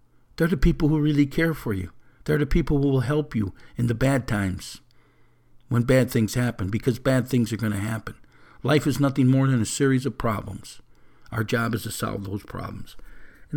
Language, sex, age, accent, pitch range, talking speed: English, male, 60-79, American, 105-140 Hz, 210 wpm